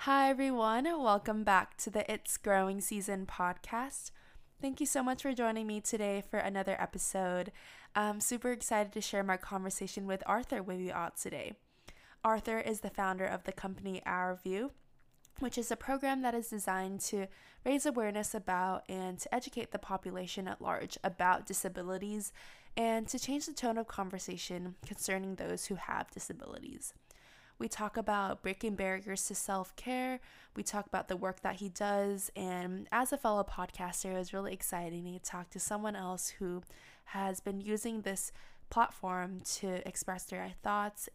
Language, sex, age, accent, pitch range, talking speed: English, female, 20-39, American, 185-220 Hz, 165 wpm